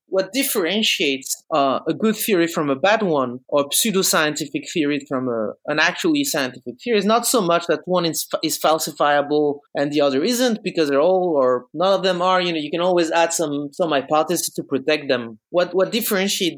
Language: English